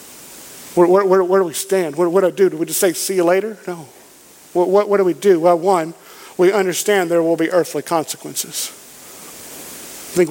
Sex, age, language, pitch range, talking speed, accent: male, 50-69, English, 170-215 Hz, 210 wpm, American